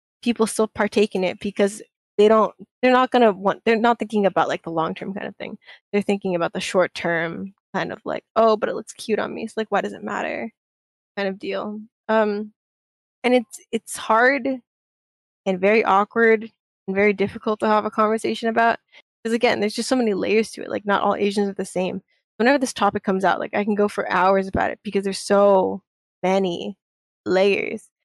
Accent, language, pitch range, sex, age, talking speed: American, English, 190-220 Hz, female, 10-29, 210 wpm